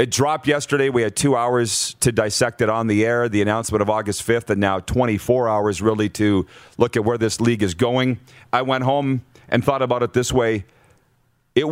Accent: American